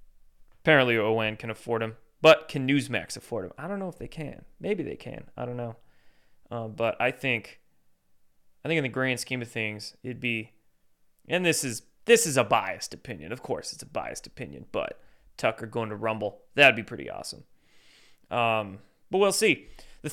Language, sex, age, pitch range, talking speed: English, male, 20-39, 115-155 Hz, 190 wpm